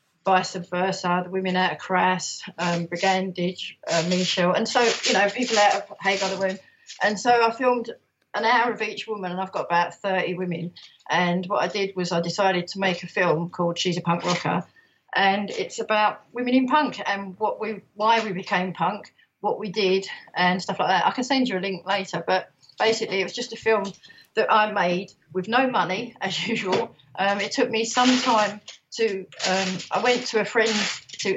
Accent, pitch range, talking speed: British, 180-210 Hz, 205 wpm